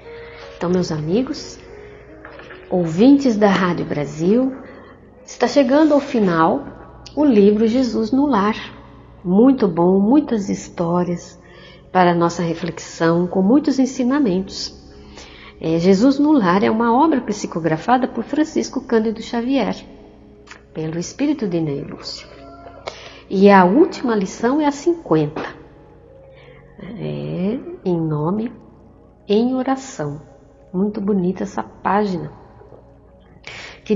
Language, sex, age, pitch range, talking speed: Portuguese, female, 60-79, 170-245 Hz, 105 wpm